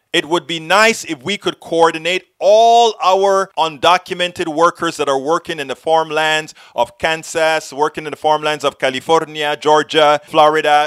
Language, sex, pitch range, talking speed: English, male, 150-205 Hz, 155 wpm